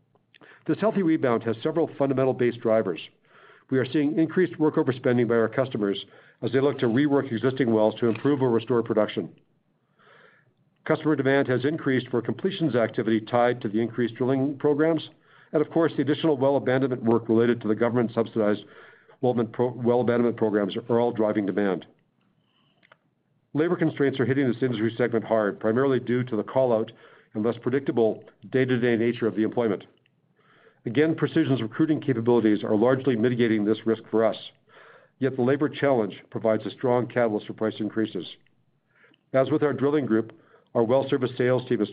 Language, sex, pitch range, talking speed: English, male, 115-140 Hz, 165 wpm